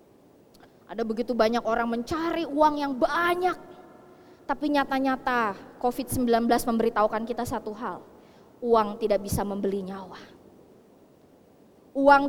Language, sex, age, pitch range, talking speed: Indonesian, female, 20-39, 245-345 Hz, 105 wpm